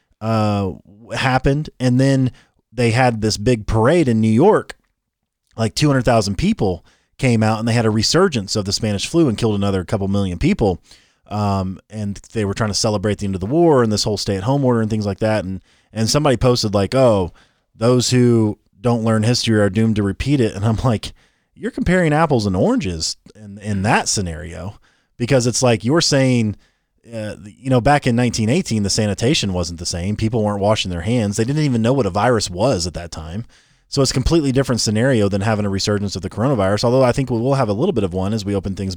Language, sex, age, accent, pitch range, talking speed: English, male, 30-49, American, 100-130 Hz, 220 wpm